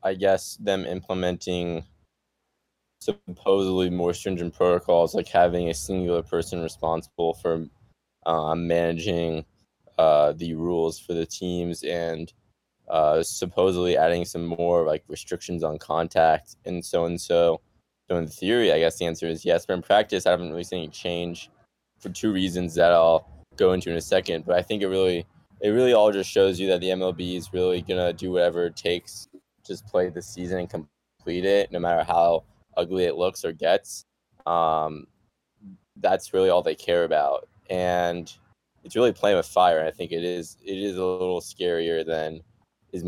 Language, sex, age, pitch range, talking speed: English, male, 20-39, 85-95 Hz, 175 wpm